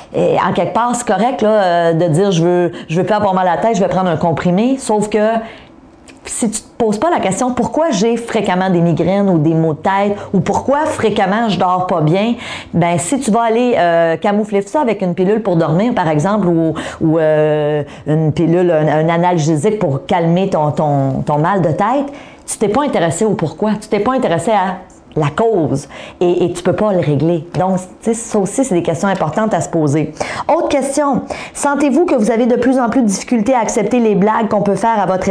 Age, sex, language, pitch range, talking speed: 40-59, female, French, 180-235 Hz, 245 wpm